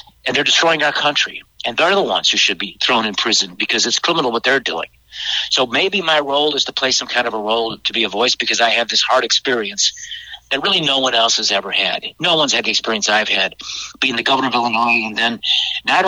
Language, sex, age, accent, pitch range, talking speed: English, male, 50-69, American, 110-135 Hz, 245 wpm